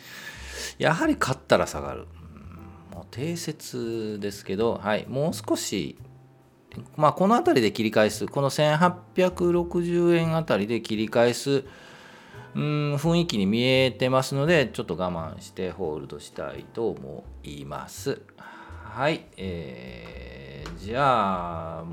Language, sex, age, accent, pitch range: Japanese, male, 40-59, native, 85-130 Hz